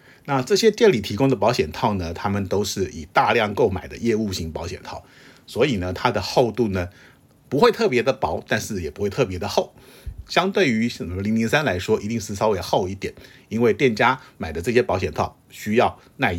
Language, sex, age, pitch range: Chinese, male, 50-69, 95-125 Hz